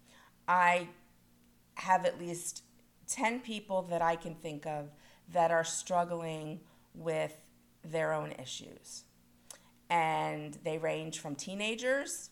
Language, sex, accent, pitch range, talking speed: English, female, American, 150-185 Hz, 110 wpm